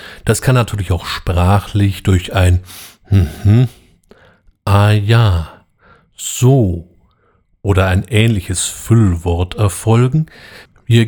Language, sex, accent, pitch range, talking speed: German, male, German, 95-115 Hz, 95 wpm